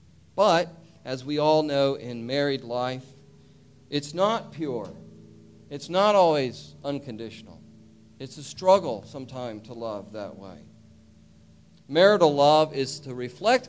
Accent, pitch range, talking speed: American, 105-145 Hz, 125 wpm